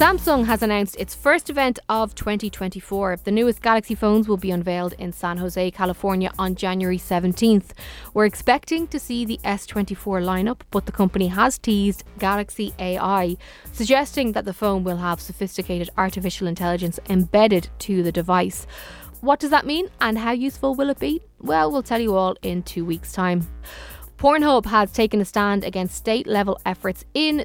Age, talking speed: 20-39, 170 wpm